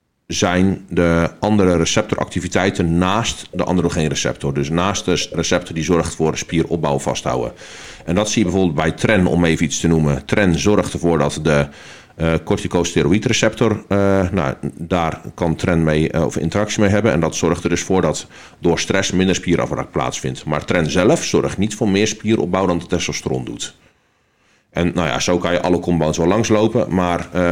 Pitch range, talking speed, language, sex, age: 85-105 Hz, 175 wpm, Dutch, male, 40-59